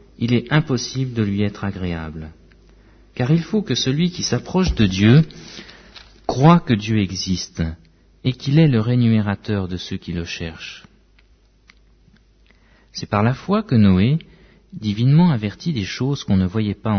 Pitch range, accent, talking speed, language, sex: 95-130 Hz, French, 155 wpm, French, male